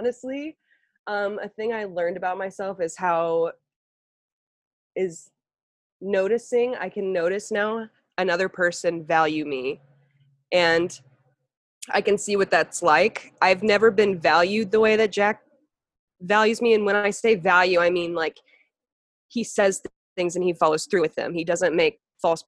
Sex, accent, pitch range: female, American, 175-225 Hz